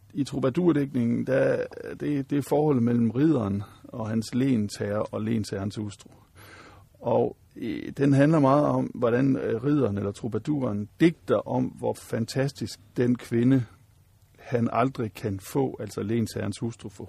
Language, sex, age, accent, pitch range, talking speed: Danish, male, 60-79, native, 105-135 Hz, 135 wpm